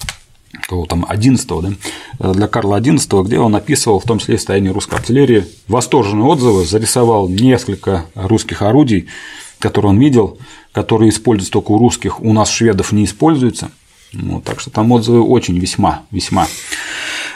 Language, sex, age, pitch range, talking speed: Russian, male, 30-49, 100-130 Hz, 145 wpm